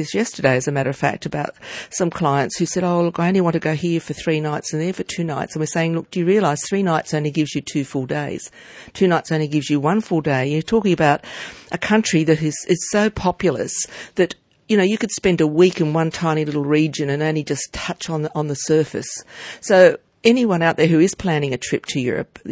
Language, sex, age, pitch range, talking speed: English, female, 50-69, 145-180 Hz, 245 wpm